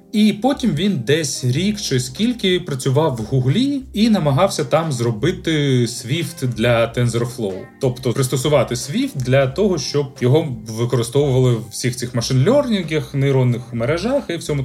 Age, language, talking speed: 30-49, Ukrainian, 135 wpm